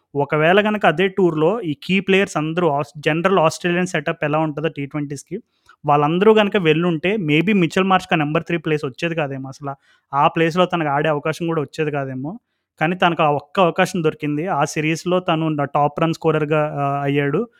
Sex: male